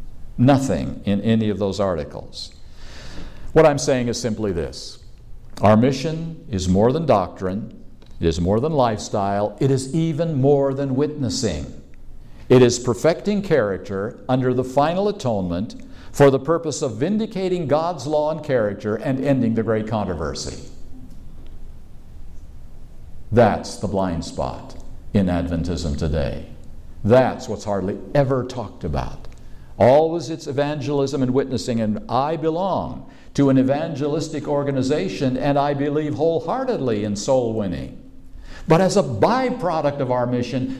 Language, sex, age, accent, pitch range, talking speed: English, male, 50-69, American, 100-145 Hz, 130 wpm